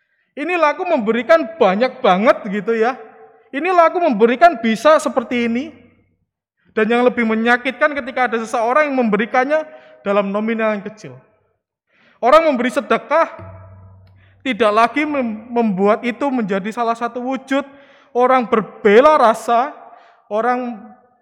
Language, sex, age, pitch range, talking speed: Indonesian, male, 20-39, 220-270 Hz, 110 wpm